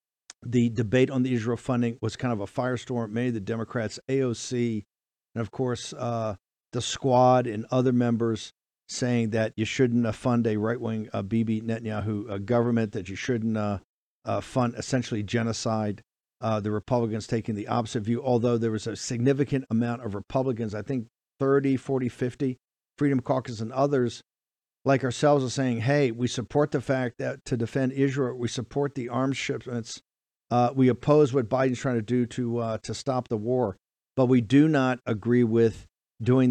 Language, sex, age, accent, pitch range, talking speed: English, male, 50-69, American, 115-130 Hz, 175 wpm